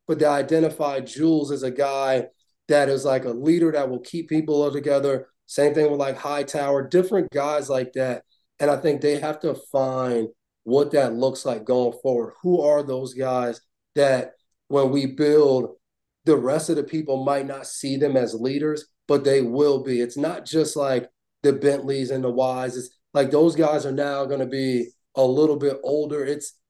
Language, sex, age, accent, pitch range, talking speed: English, male, 30-49, American, 130-145 Hz, 195 wpm